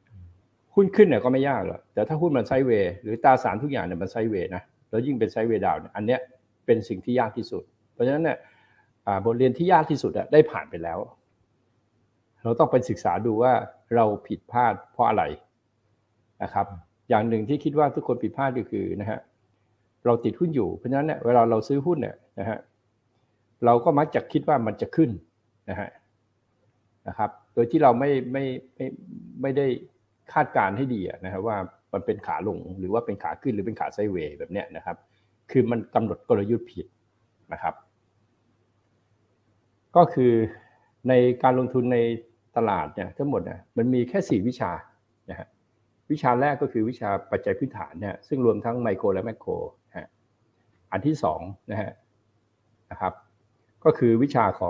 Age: 60-79